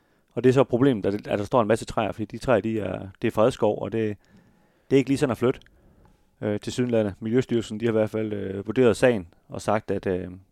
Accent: native